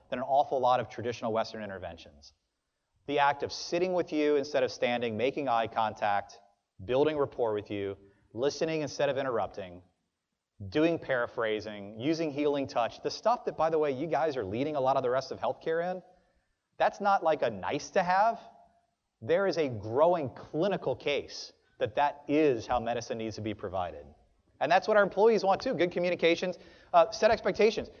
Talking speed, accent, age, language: 180 wpm, American, 30-49, English